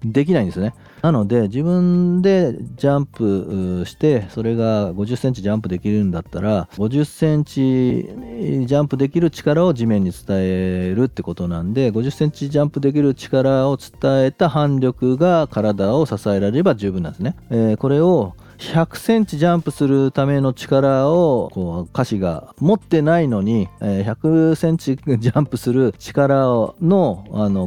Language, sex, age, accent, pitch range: Japanese, male, 40-59, native, 100-150 Hz